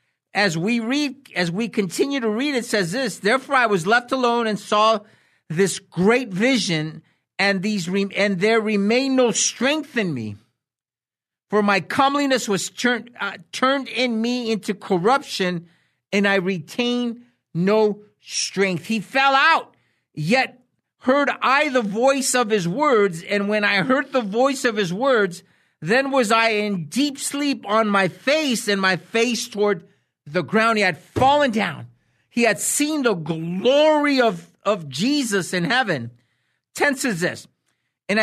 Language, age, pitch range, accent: English, 50-69, 175-250 Hz, American